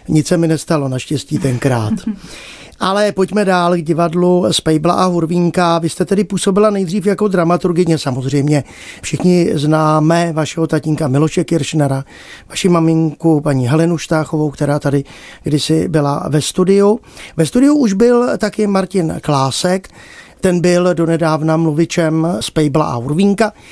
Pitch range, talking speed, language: 155-200 Hz, 140 wpm, Czech